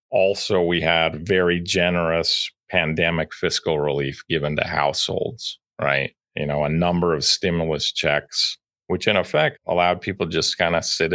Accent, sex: American, male